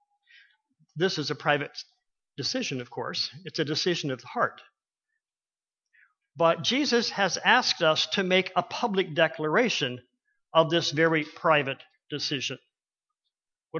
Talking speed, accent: 125 wpm, American